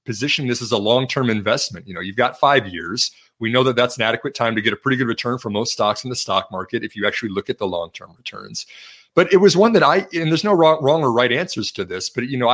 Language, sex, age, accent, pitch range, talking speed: English, male, 30-49, American, 110-140 Hz, 285 wpm